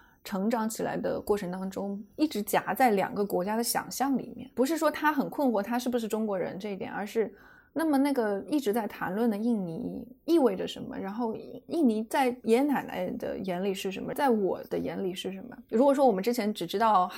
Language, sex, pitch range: Chinese, female, 190-245 Hz